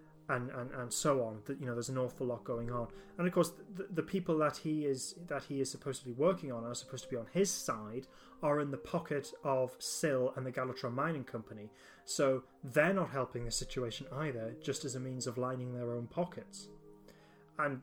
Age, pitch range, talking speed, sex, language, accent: 30-49, 125-150 Hz, 220 wpm, male, English, British